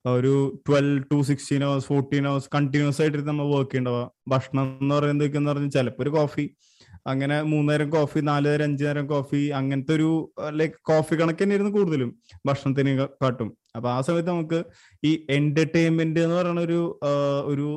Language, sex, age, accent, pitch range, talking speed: Malayalam, male, 20-39, native, 135-165 Hz, 140 wpm